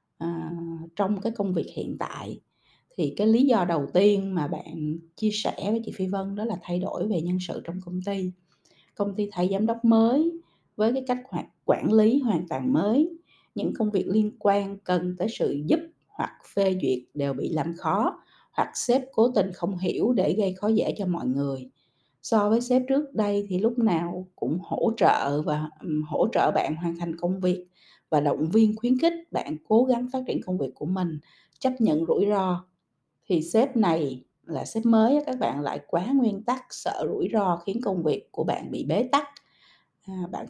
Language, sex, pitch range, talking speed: Vietnamese, female, 170-225 Hz, 200 wpm